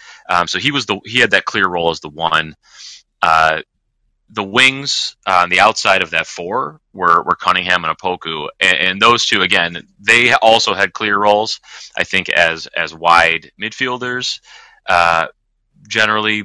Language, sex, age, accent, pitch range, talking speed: English, male, 30-49, American, 85-110 Hz, 170 wpm